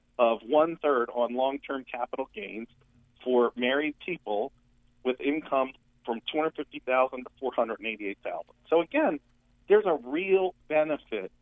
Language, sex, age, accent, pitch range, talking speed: English, male, 40-59, American, 120-145 Hz, 110 wpm